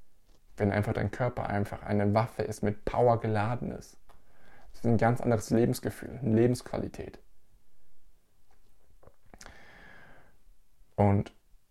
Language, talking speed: German, 110 wpm